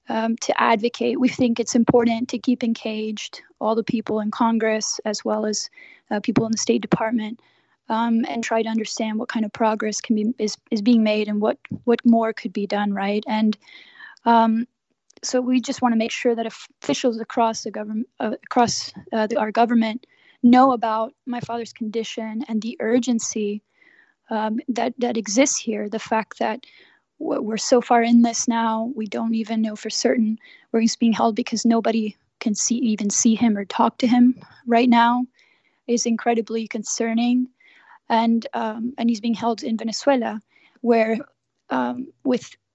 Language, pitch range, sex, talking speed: English, 220-245 Hz, female, 175 wpm